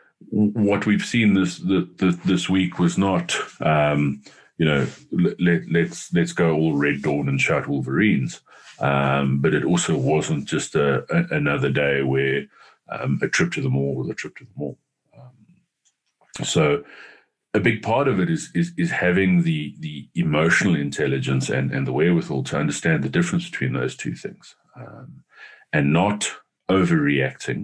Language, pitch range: English, 70-105 Hz